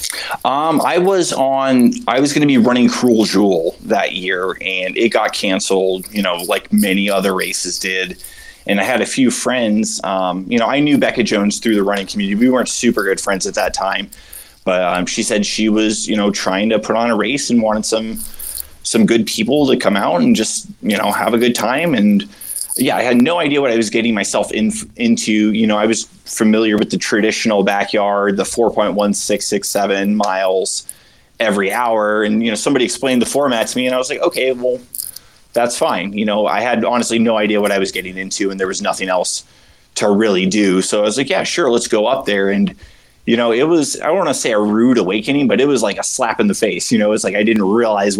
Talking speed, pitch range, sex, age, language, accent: 230 wpm, 100-125 Hz, male, 20-39, English, American